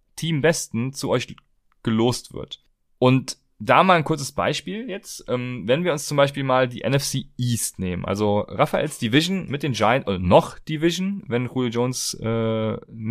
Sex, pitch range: male, 110-140 Hz